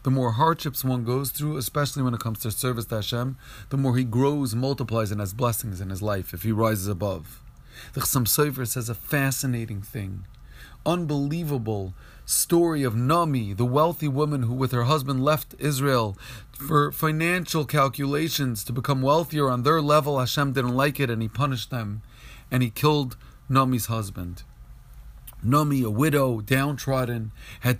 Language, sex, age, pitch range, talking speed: English, male, 30-49, 120-145 Hz, 165 wpm